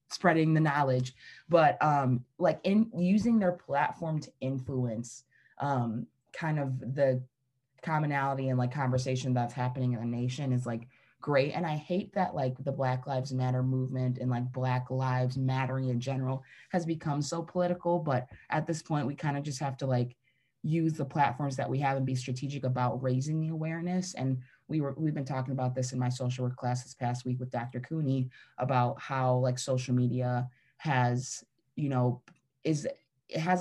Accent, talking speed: American, 185 wpm